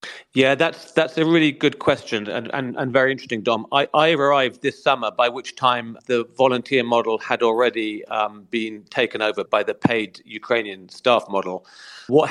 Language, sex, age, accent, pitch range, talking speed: English, male, 40-59, British, 115-135 Hz, 180 wpm